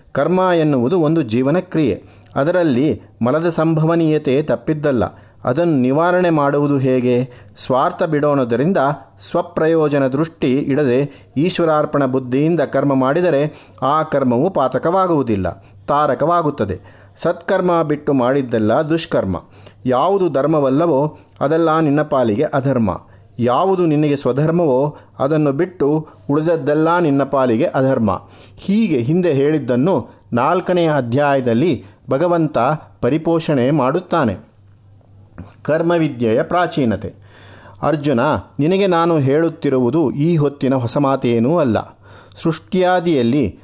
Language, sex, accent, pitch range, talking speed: Kannada, male, native, 120-165 Hz, 90 wpm